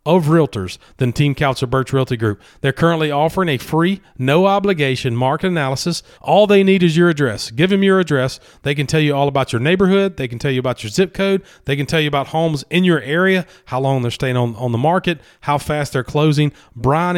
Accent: American